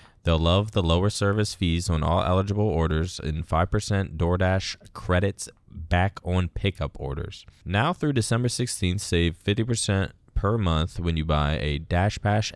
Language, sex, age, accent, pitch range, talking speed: English, male, 20-39, American, 85-110 Hz, 150 wpm